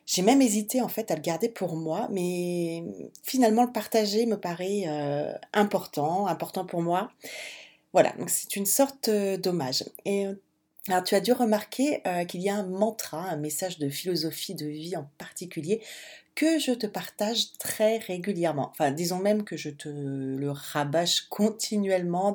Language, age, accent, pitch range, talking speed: French, 40-59, French, 165-215 Hz, 165 wpm